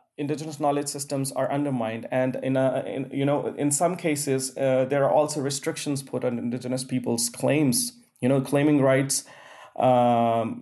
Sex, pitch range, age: male, 125-145 Hz, 20-39